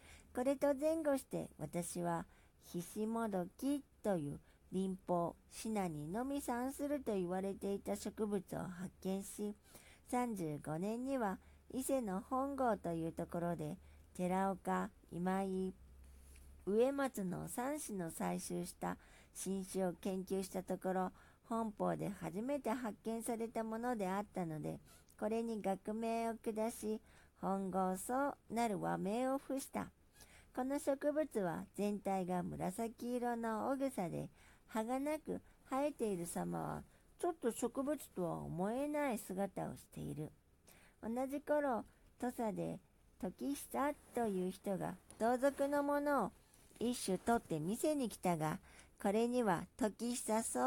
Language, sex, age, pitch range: Japanese, male, 50-69, 185-250 Hz